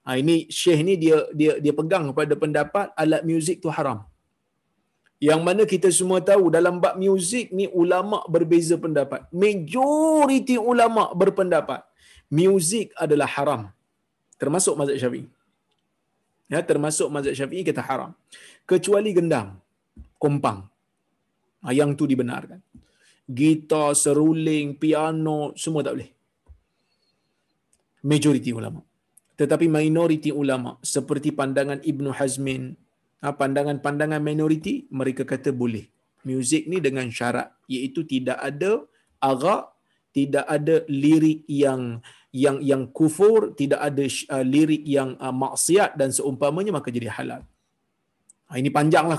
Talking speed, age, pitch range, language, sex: 115 wpm, 30-49, 140-170 Hz, Malayalam, male